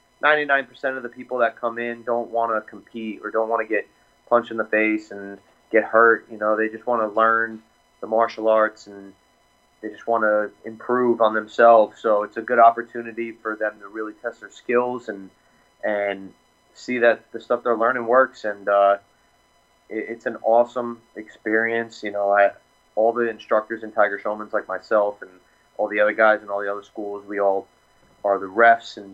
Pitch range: 105-115 Hz